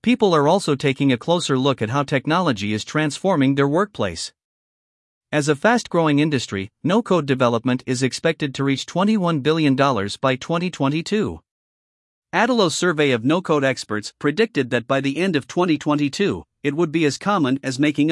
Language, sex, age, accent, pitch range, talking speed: English, male, 50-69, American, 130-170 Hz, 155 wpm